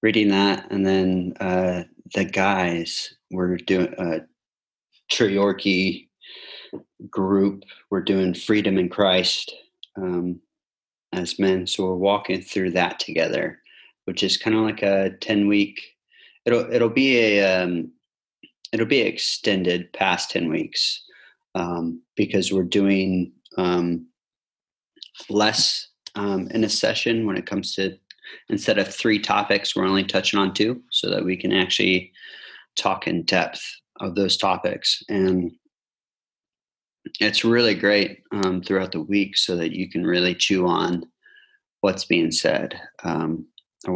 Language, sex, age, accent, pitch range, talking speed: English, male, 30-49, American, 90-100 Hz, 135 wpm